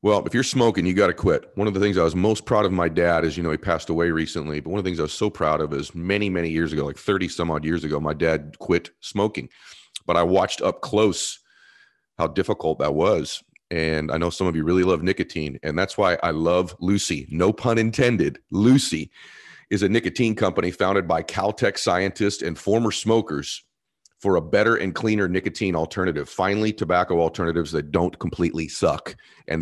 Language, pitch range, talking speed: English, 85-105 Hz, 215 wpm